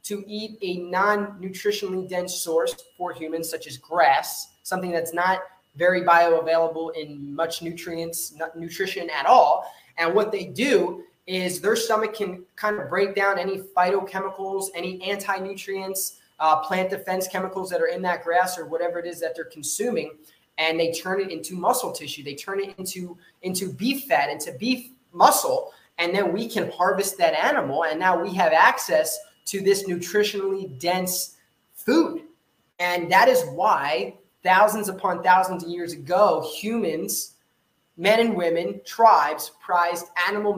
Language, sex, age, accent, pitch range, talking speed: English, male, 20-39, American, 170-205 Hz, 155 wpm